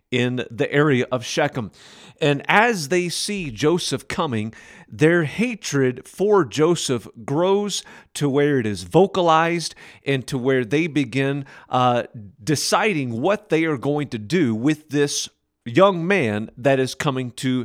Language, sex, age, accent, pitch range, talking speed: English, male, 40-59, American, 125-170 Hz, 145 wpm